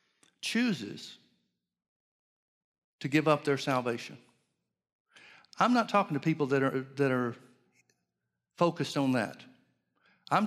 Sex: male